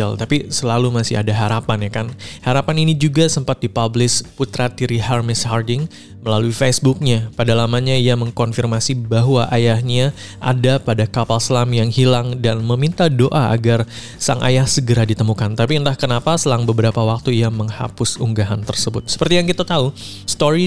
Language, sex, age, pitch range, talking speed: Indonesian, male, 20-39, 115-130 Hz, 155 wpm